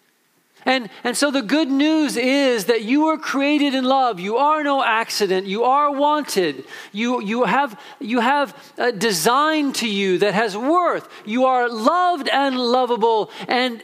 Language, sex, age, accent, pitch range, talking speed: English, male, 50-69, American, 205-280 Hz, 165 wpm